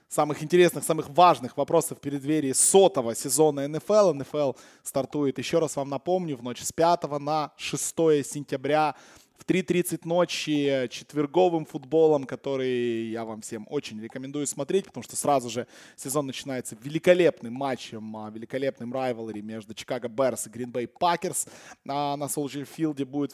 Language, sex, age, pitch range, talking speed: Russian, male, 20-39, 130-160 Hz, 140 wpm